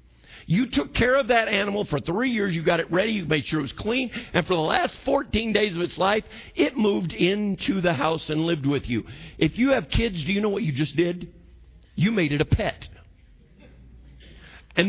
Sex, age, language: male, 50-69, English